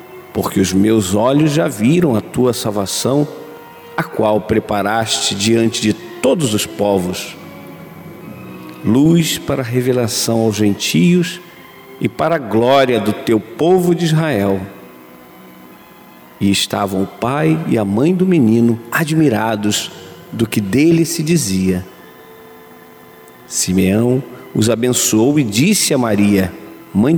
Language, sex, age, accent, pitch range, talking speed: Portuguese, male, 50-69, Brazilian, 100-145 Hz, 120 wpm